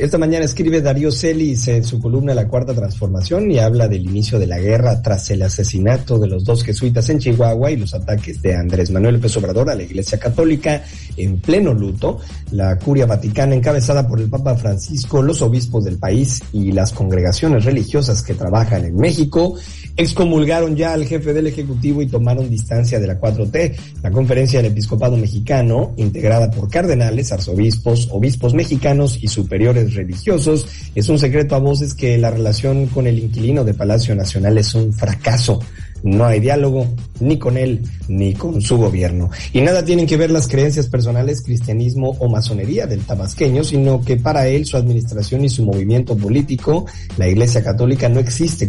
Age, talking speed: 50-69, 175 wpm